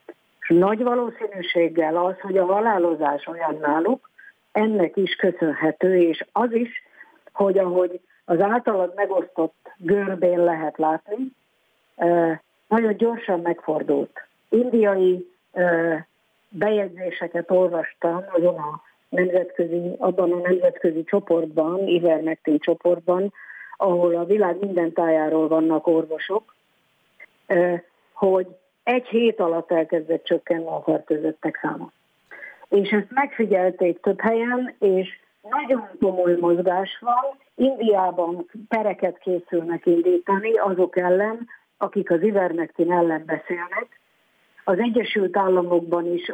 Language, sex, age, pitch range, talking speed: Hungarian, female, 50-69, 170-205 Hz, 100 wpm